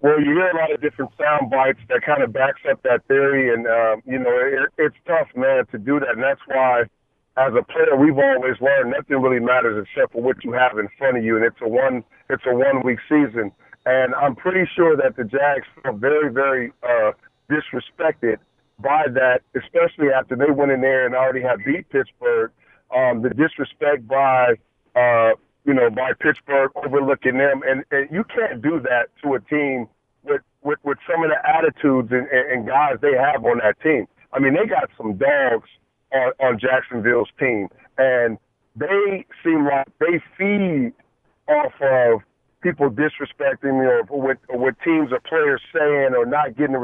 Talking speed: 190 wpm